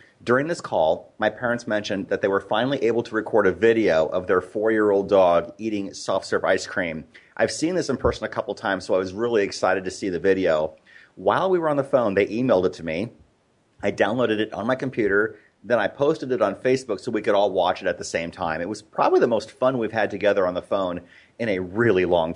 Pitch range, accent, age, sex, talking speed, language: 95-135 Hz, American, 30-49, male, 240 wpm, English